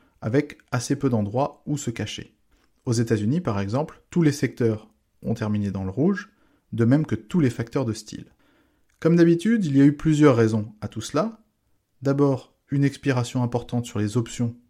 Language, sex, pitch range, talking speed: English, male, 110-140 Hz, 185 wpm